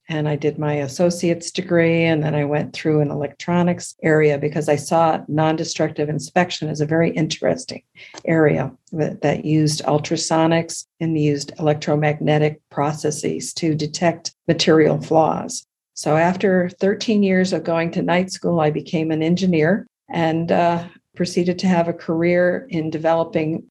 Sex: female